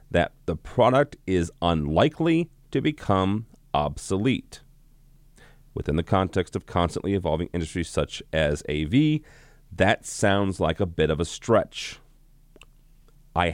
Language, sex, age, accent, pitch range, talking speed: English, male, 30-49, American, 80-110 Hz, 120 wpm